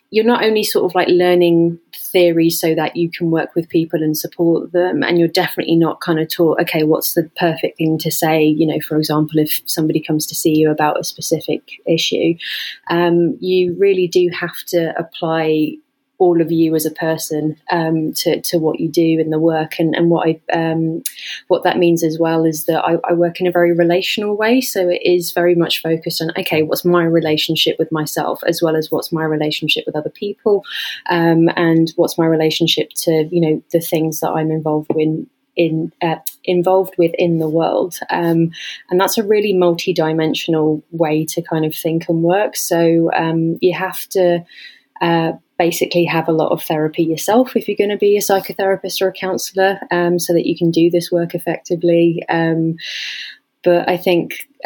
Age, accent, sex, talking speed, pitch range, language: 20-39, British, female, 200 wpm, 160-180 Hz, English